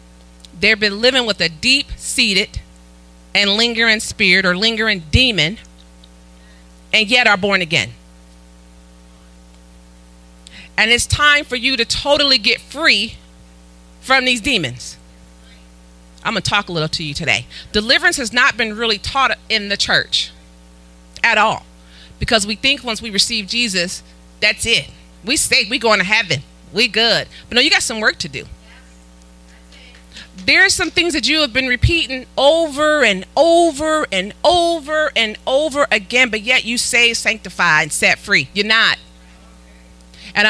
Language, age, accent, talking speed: English, 40-59, American, 150 wpm